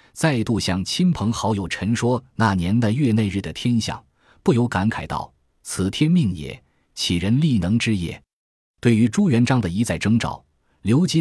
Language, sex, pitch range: Chinese, male, 90-120 Hz